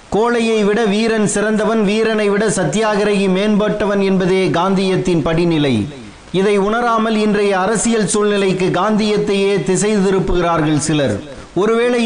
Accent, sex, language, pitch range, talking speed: native, male, Tamil, 185-210 Hz, 105 wpm